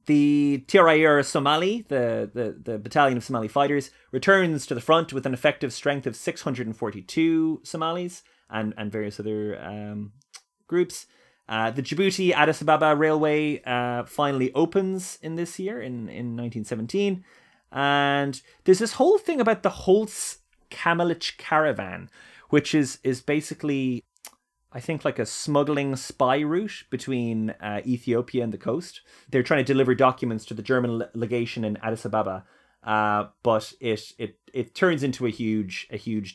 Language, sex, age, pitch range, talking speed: English, male, 20-39, 110-155 Hz, 150 wpm